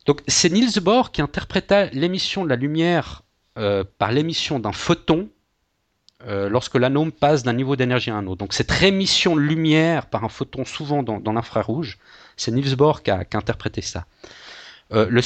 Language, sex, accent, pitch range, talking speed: French, male, French, 115-170 Hz, 190 wpm